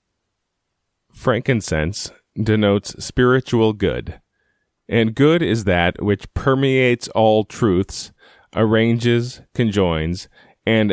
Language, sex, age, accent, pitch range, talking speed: English, male, 30-49, American, 95-120 Hz, 80 wpm